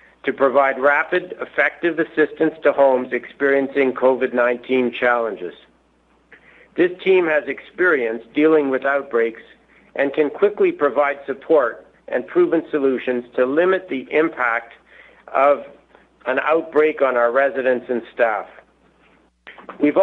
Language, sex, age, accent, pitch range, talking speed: English, male, 50-69, American, 125-155 Hz, 115 wpm